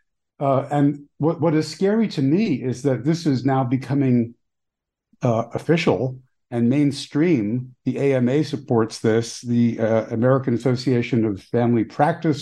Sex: male